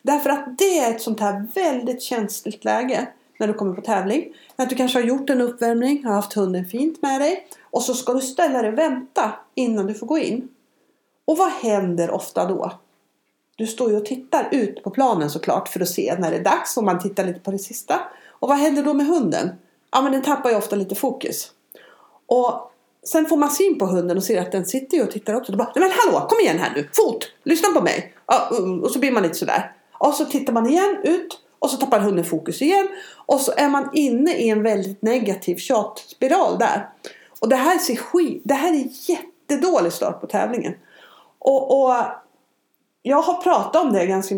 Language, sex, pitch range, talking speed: Swedish, female, 205-315 Hz, 215 wpm